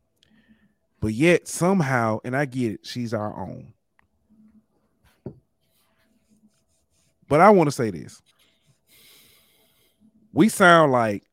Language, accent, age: English, American, 30-49